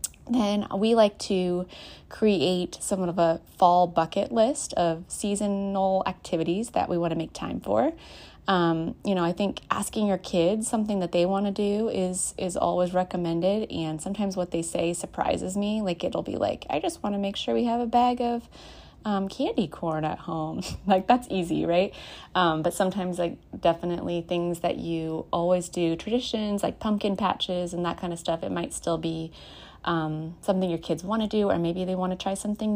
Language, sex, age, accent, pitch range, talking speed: English, female, 30-49, American, 170-200 Hz, 195 wpm